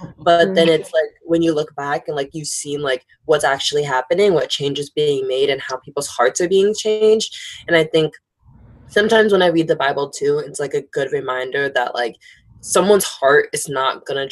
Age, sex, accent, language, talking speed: 20-39, female, American, English, 210 wpm